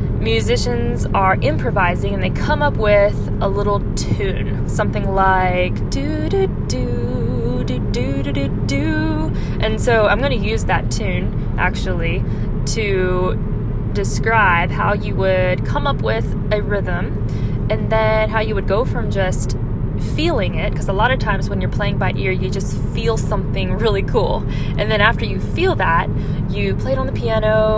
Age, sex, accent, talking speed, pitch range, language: 20-39, female, American, 150 wpm, 105-125 Hz, English